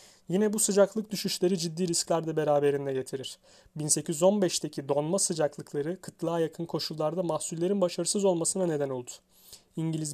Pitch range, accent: 150-180 Hz, native